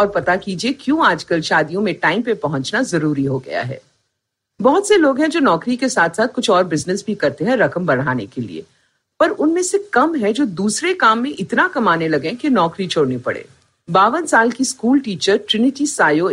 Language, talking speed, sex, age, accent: Hindi, 40 wpm, female, 50-69, native